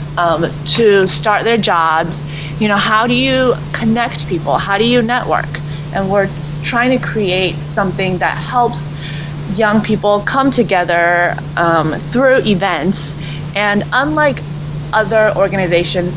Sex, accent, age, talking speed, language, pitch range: female, American, 30-49, 130 wpm, English, 155-210 Hz